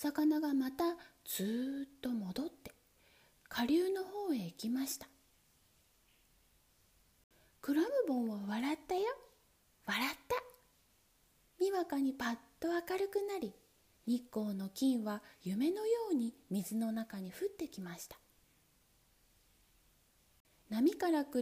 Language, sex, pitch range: Japanese, female, 225-330 Hz